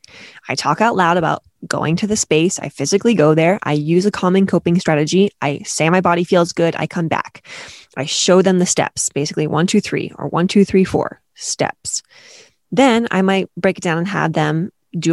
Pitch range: 160-200 Hz